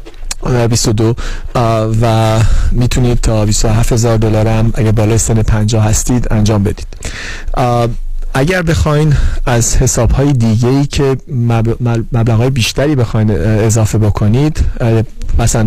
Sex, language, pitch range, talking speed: male, Persian, 110-125 Hz, 105 wpm